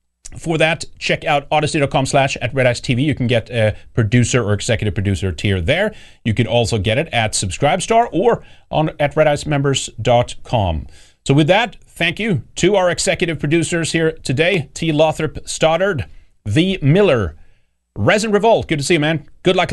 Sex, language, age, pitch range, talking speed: male, English, 40-59, 110-165 Hz, 165 wpm